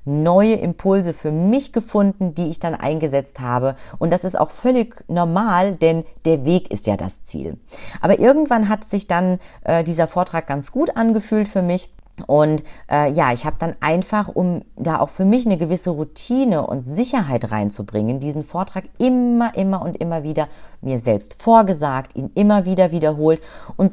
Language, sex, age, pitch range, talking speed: German, female, 30-49, 150-210 Hz, 175 wpm